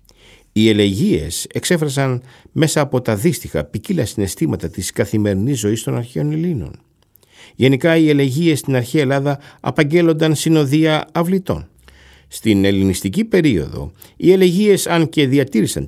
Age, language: 60-79, Greek